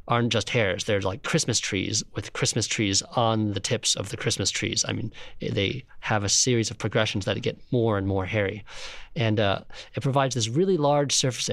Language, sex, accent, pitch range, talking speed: English, male, American, 110-140 Hz, 205 wpm